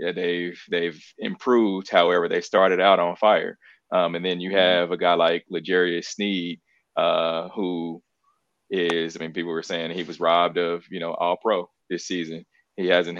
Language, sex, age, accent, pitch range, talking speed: English, male, 20-39, American, 85-95 Hz, 180 wpm